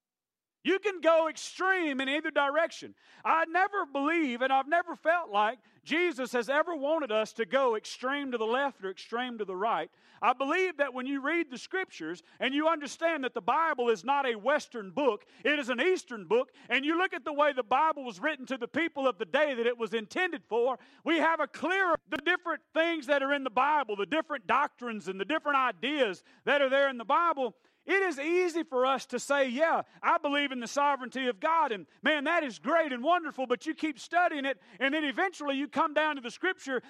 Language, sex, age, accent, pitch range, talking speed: English, male, 40-59, American, 255-330 Hz, 225 wpm